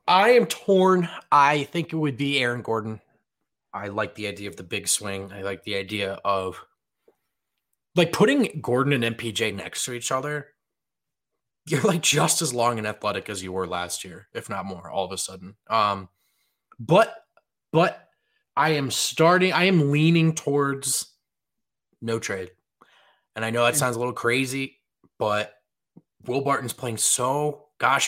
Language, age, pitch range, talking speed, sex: English, 20-39, 110-155 Hz, 165 wpm, male